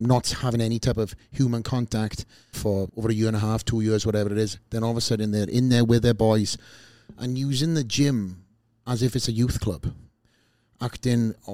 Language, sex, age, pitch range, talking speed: English, male, 30-49, 105-120 Hz, 215 wpm